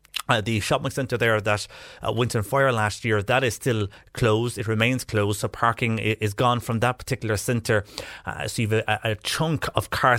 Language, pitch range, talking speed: English, 110-130 Hz, 205 wpm